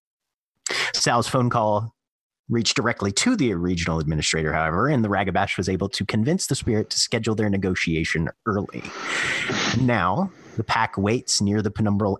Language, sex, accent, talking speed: English, male, American, 150 wpm